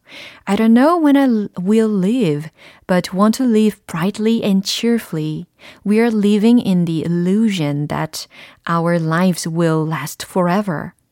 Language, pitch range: Korean, 170-230 Hz